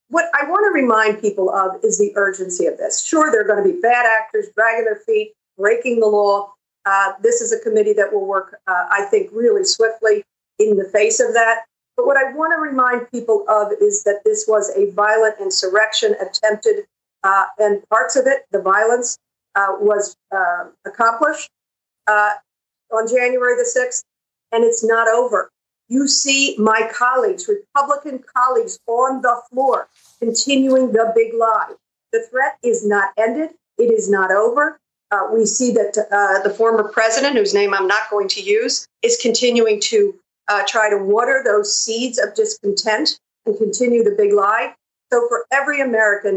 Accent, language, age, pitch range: American, English, 50-69, 210-280 Hz